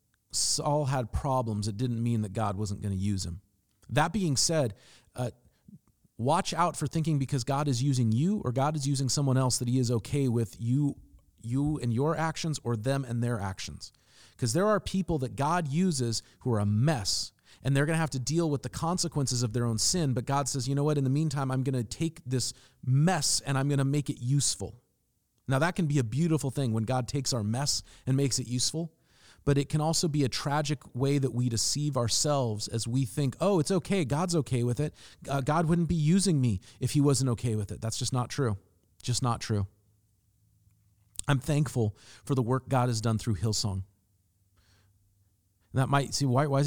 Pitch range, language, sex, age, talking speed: 110-145 Hz, English, male, 40-59, 215 wpm